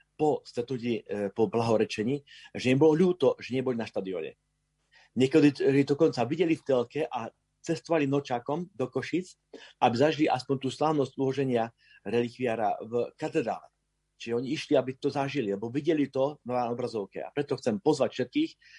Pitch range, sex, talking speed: 110-145 Hz, male, 150 wpm